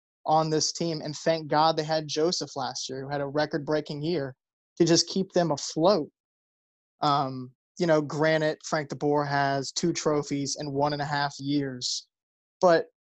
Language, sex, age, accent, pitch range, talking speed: English, male, 20-39, American, 145-165 Hz, 175 wpm